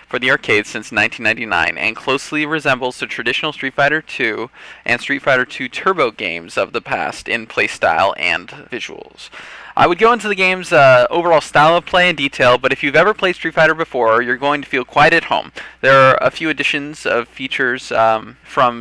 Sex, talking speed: male, 200 wpm